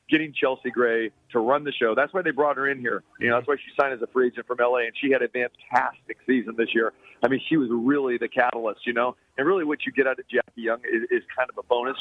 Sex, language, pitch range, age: male, English, 120-135 Hz, 40-59